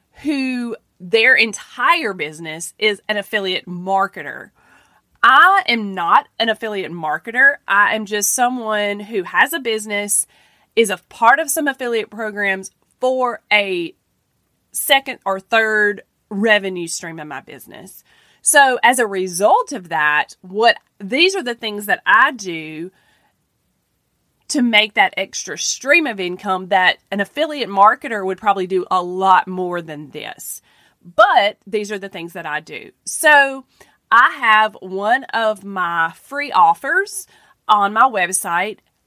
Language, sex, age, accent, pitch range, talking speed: English, female, 30-49, American, 190-245 Hz, 140 wpm